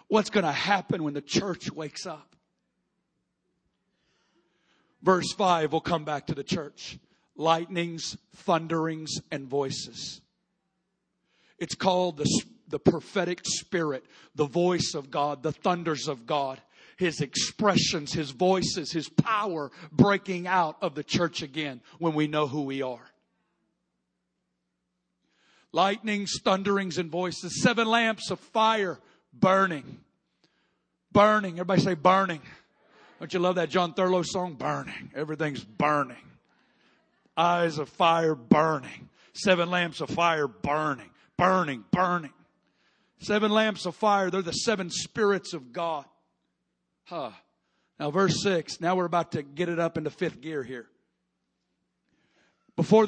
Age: 50-69